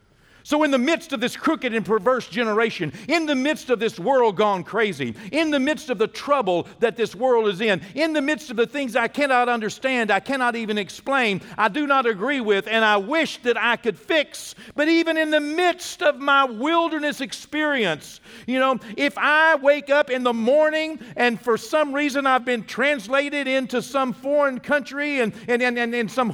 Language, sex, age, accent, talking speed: English, male, 50-69, American, 205 wpm